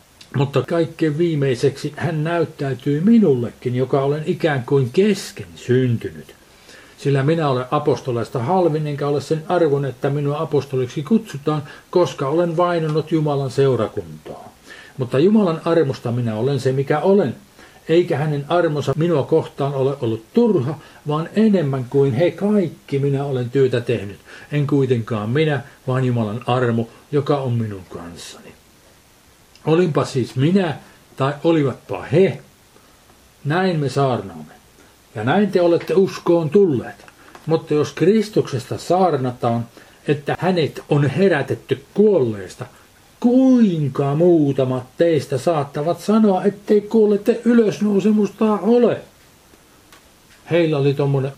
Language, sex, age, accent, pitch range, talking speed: Finnish, male, 50-69, native, 130-175 Hz, 120 wpm